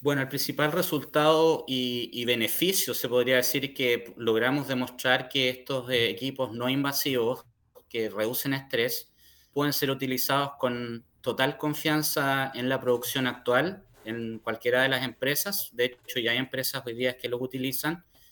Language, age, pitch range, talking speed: Spanish, 30-49, 115-135 Hz, 155 wpm